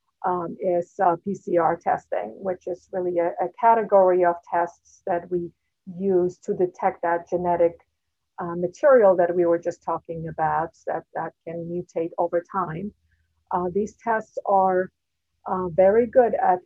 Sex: female